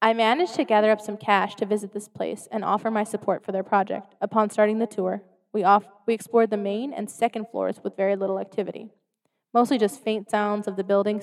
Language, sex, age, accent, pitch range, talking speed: English, female, 20-39, American, 195-225 Hz, 220 wpm